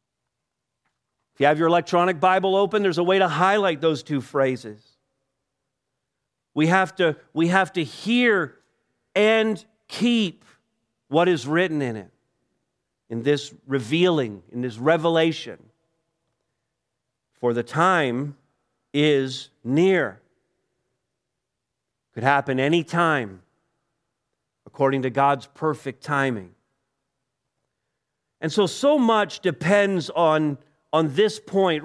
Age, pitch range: 50-69, 130-185 Hz